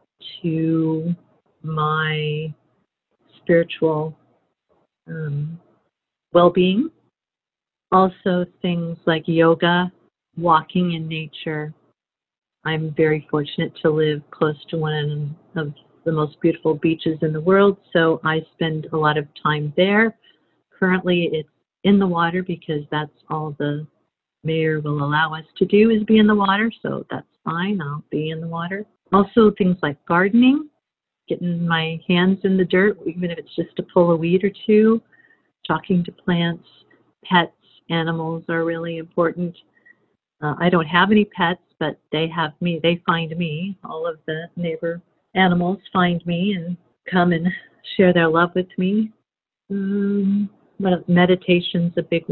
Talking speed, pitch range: 145 wpm, 160-185 Hz